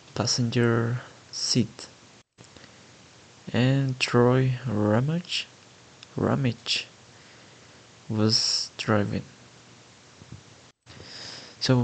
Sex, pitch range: male, 110-130 Hz